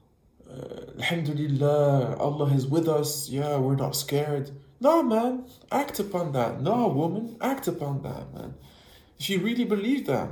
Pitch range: 125-175 Hz